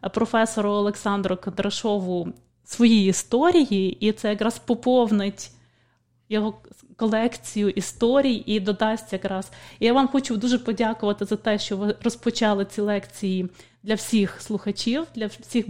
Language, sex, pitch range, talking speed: English, female, 200-235 Hz, 125 wpm